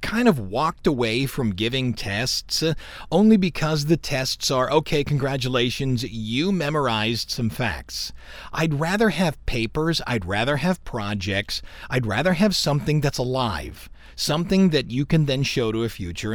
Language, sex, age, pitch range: English, male, 40-59, 115-180 Hz